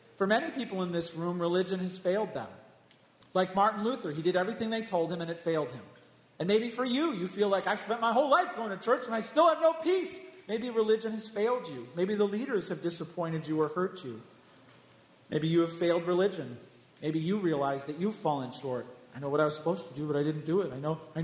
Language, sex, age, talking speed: English, male, 40-59, 245 wpm